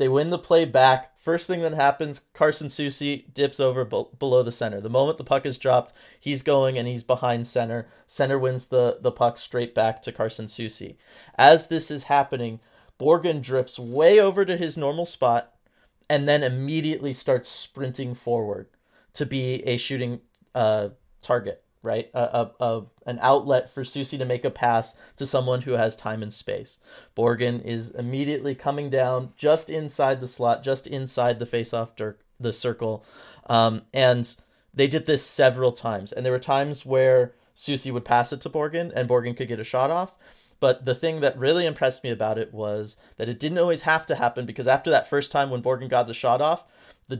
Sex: male